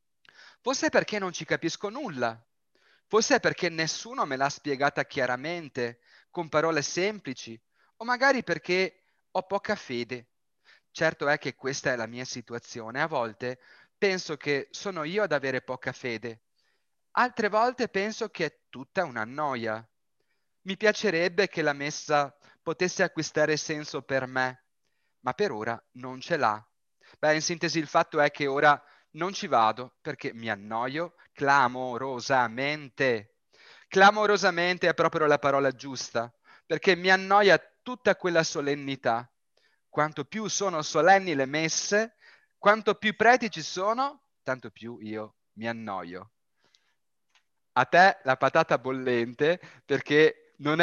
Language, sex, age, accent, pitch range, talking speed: Italian, male, 30-49, native, 130-190 Hz, 135 wpm